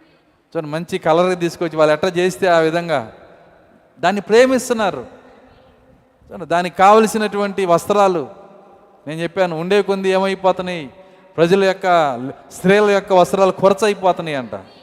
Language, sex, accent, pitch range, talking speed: Telugu, male, native, 165-205 Hz, 110 wpm